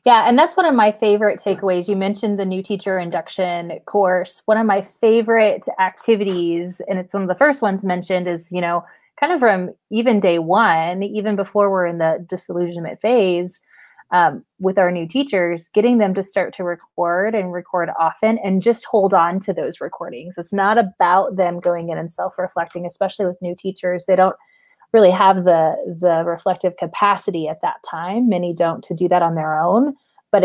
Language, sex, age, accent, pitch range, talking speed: English, female, 20-39, American, 175-210 Hz, 190 wpm